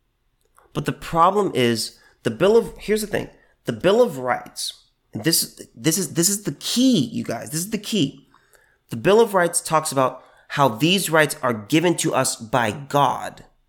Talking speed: 185 wpm